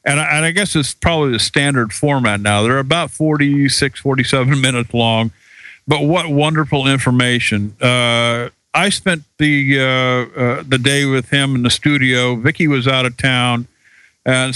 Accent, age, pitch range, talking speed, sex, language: American, 50-69, 125-145 Hz, 155 wpm, male, English